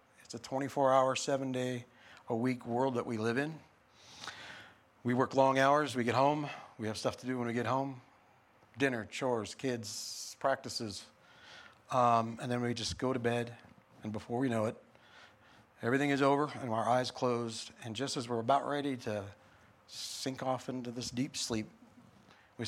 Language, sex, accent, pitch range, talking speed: English, male, American, 110-135 Hz, 165 wpm